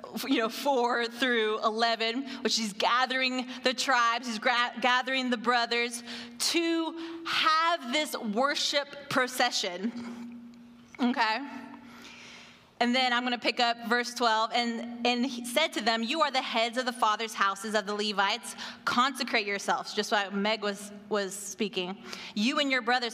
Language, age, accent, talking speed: English, 20-39, American, 155 wpm